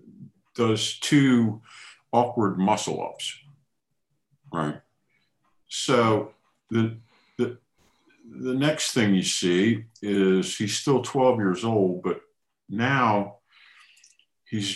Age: 50-69